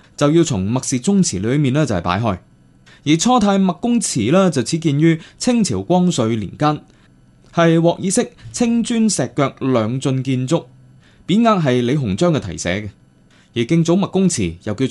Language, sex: Chinese, male